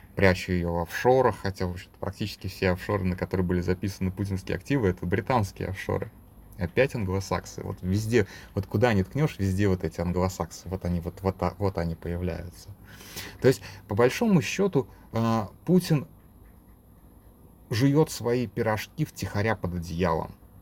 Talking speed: 130 wpm